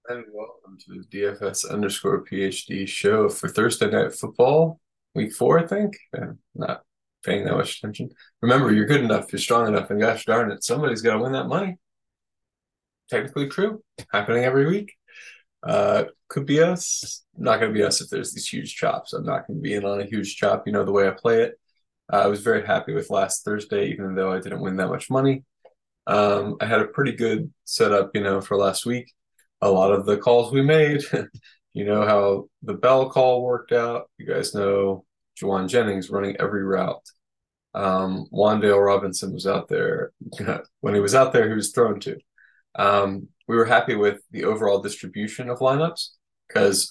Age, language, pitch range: 20-39, English, 100-135 Hz